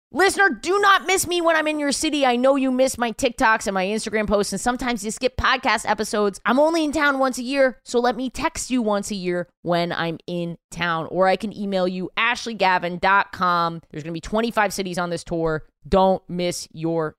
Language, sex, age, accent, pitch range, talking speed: English, female, 20-39, American, 180-255 Hz, 215 wpm